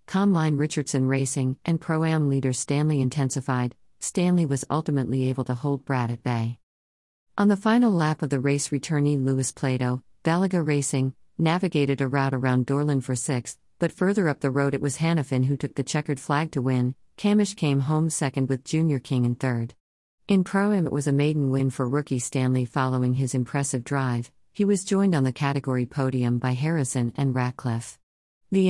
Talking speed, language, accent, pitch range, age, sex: 180 wpm, English, American, 130-160 Hz, 50-69, female